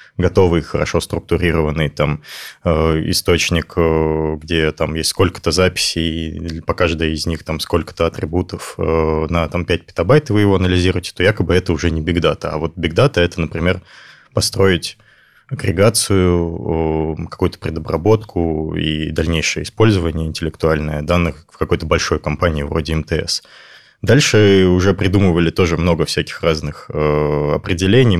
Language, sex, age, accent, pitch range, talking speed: Russian, male, 20-39, native, 80-100 Hz, 130 wpm